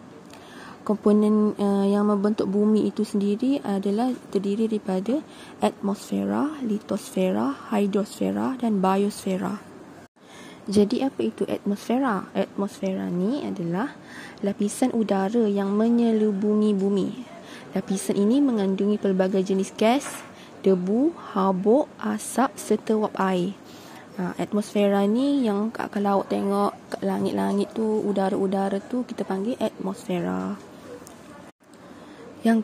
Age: 20-39